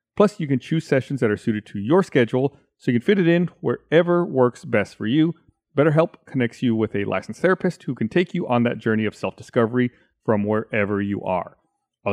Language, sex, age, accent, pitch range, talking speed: English, male, 40-59, American, 115-165 Hz, 215 wpm